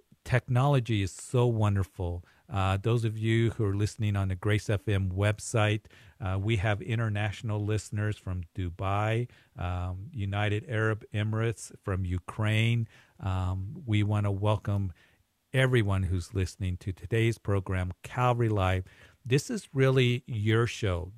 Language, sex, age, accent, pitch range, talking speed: English, male, 50-69, American, 100-115 Hz, 135 wpm